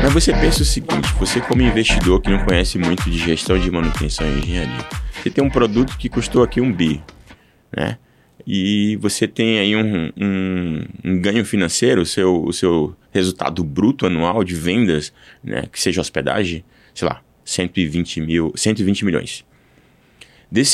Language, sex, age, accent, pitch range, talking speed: Portuguese, male, 20-39, Brazilian, 90-115 Hz, 165 wpm